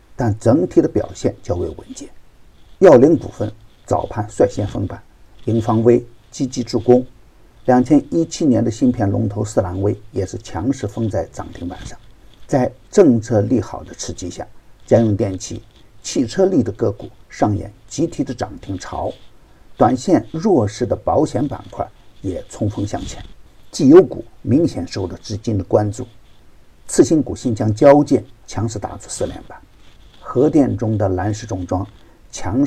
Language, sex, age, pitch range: Chinese, male, 50-69, 100-125 Hz